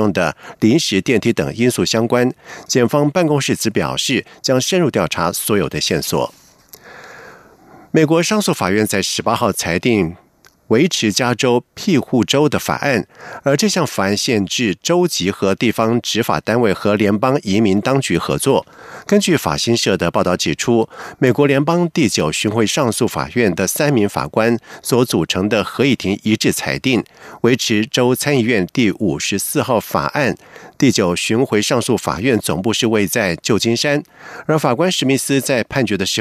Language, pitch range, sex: German, 105-145 Hz, male